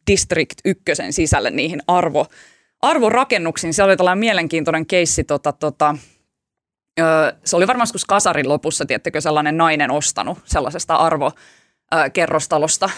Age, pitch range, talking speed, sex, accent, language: 20-39, 155-200 Hz, 105 wpm, female, native, Finnish